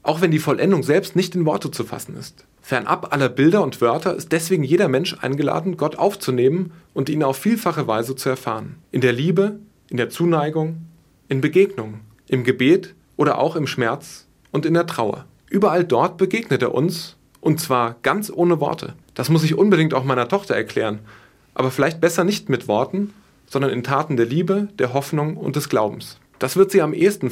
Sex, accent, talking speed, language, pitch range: male, German, 190 wpm, German, 130-175 Hz